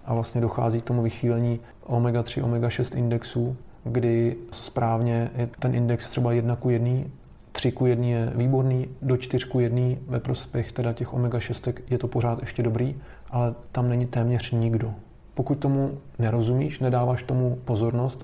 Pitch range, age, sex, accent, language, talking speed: 120-130 Hz, 30-49, male, native, Czech, 155 wpm